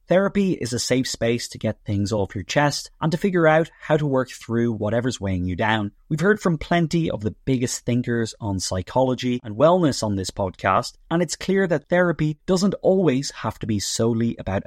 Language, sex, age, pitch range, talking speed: English, male, 20-39, 110-165 Hz, 205 wpm